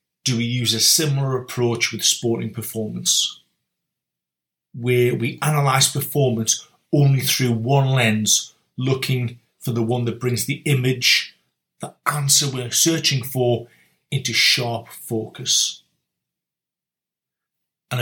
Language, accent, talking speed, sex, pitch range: English, British, 115 wpm, male, 120-140 Hz